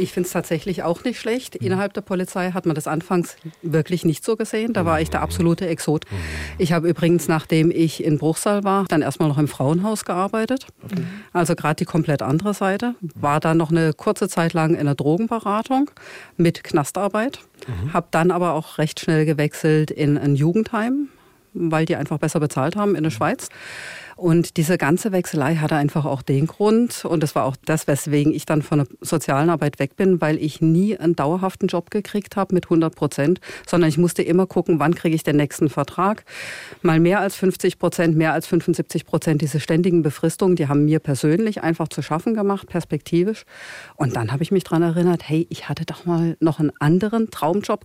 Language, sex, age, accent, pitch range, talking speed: German, female, 40-59, German, 155-190 Hz, 195 wpm